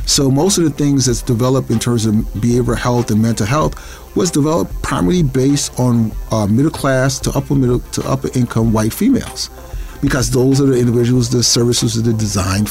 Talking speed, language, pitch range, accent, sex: 190 wpm, English, 115-140 Hz, American, male